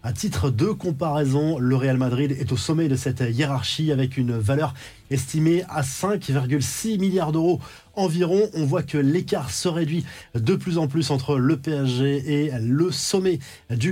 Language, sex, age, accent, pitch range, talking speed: French, male, 20-39, French, 135-175 Hz, 170 wpm